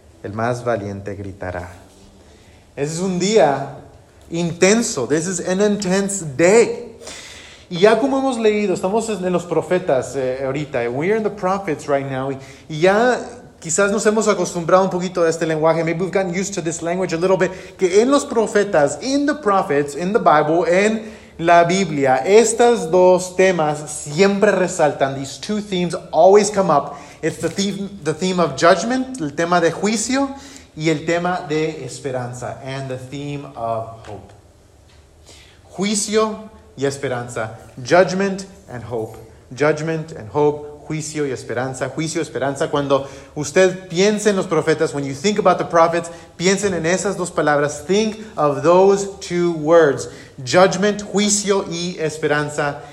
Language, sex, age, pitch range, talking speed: English, male, 30-49, 140-195 Hz, 155 wpm